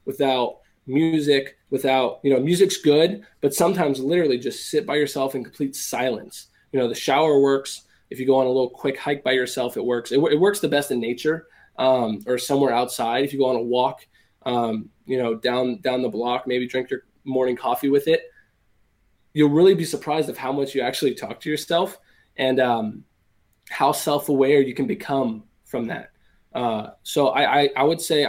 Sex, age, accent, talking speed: male, 20-39, American, 195 wpm